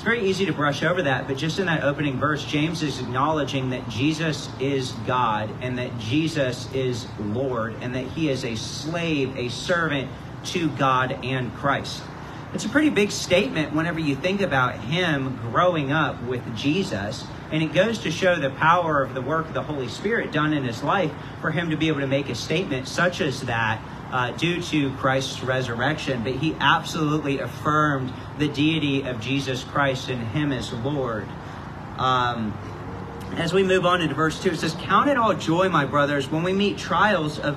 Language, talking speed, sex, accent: English, 190 wpm, male, American